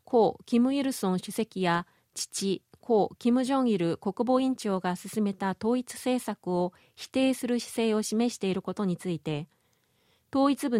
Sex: female